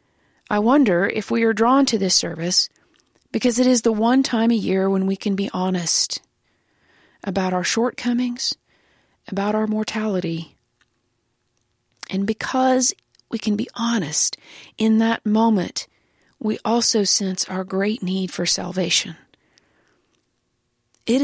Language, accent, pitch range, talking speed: English, American, 185-220 Hz, 130 wpm